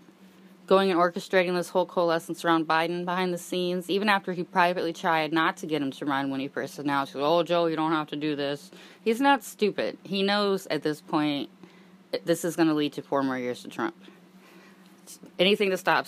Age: 10-29